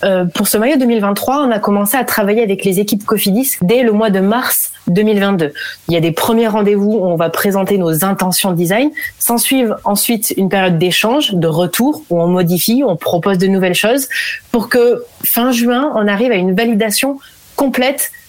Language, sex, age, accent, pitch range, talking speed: French, female, 30-49, French, 190-250 Hz, 200 wpm